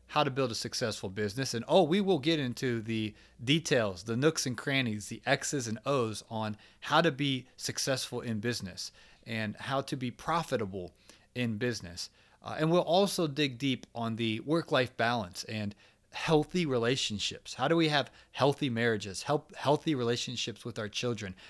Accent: American